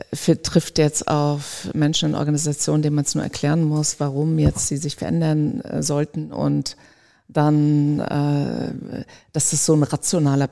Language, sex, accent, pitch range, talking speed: German, female, German, 145-155 Hz, 160 wpm